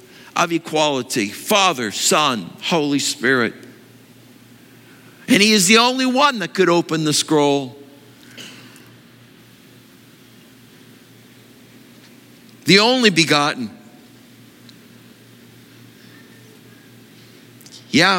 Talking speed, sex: 70 wpm, male